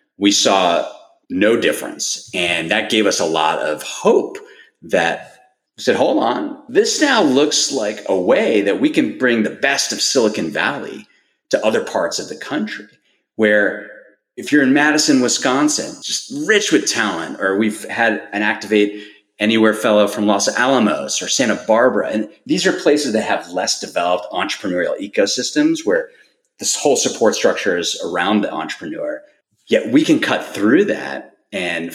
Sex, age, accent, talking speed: male, 30-49, American, 165 wpm